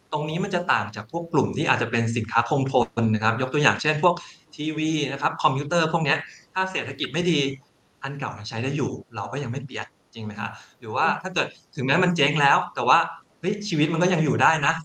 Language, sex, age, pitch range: Thai, male, 20-39, 115-155 Hz